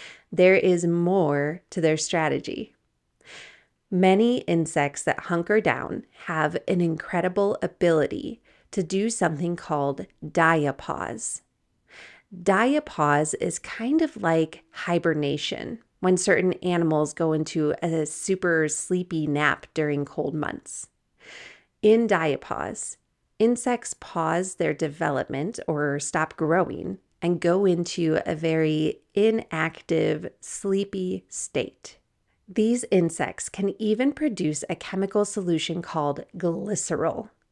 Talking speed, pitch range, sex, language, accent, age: 105 wpm, 160-195 Hz, female, English, American, 30-49